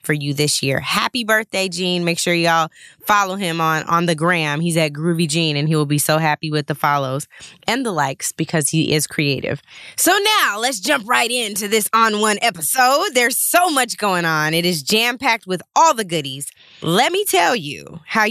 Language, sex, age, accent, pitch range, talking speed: English, female, 20-39, American, 170-260 Hz, 205 wpm